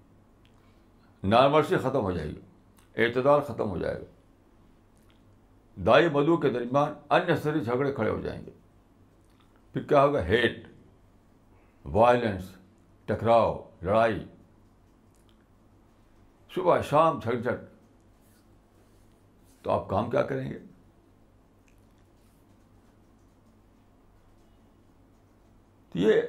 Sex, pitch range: male, 95-115 Hz